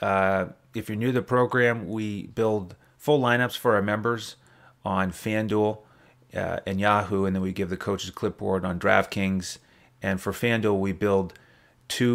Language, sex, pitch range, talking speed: English, male, 95-115 Hz, 175 wpm